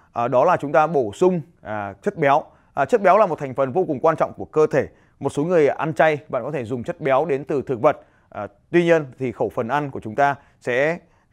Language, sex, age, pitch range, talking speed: Vietnamese, male, 20-39, 120-155 Hz, 245 wpm